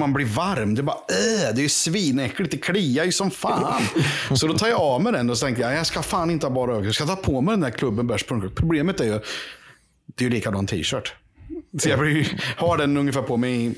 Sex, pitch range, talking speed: male, 115-145 Hz, 245 wpm